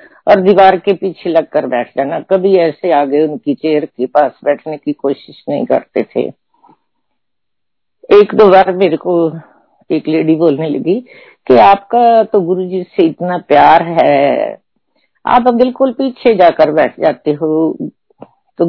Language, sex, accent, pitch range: Hindi, female, native, 175-225 Hz